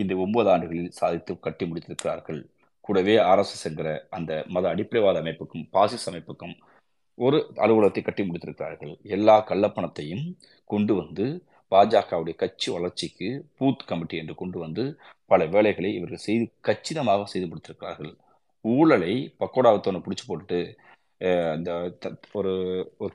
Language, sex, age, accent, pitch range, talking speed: Tamil, male, 30-49, native, 90-105 Hz, 120 wpm